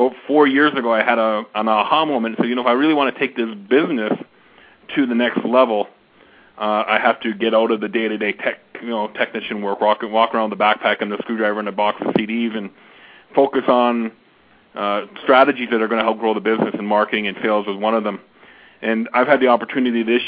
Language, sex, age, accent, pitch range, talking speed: English, male, 40-59, American, 110-125 Hz, 235 wpm